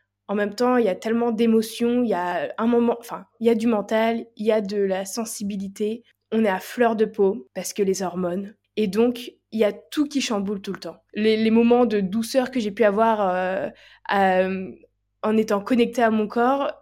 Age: 20-39